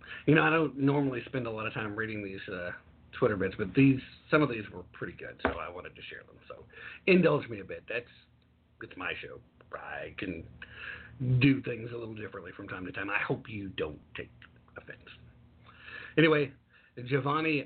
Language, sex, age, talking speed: English, male, 50-69, 195 wpm